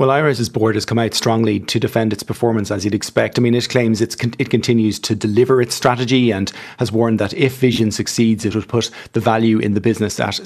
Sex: male